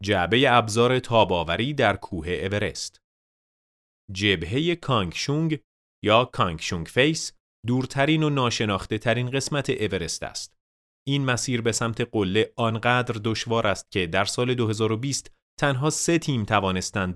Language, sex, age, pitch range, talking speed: Persian, male, 30-49, 95-125 Hz, 120 wpm